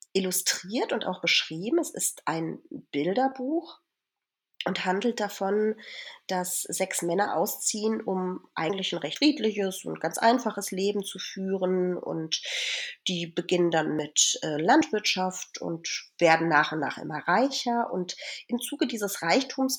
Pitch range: 170-220 Hz